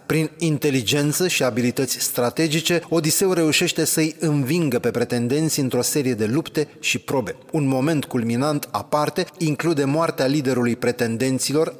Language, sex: Romanian, male